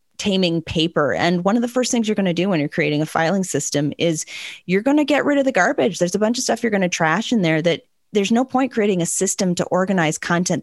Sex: female